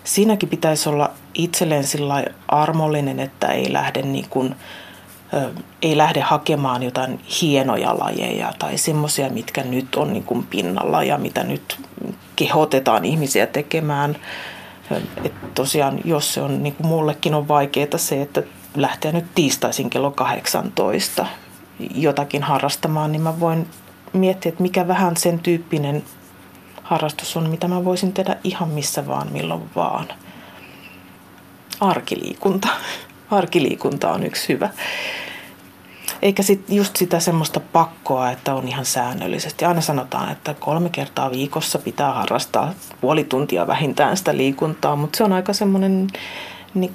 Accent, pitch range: native, 140-175 Hz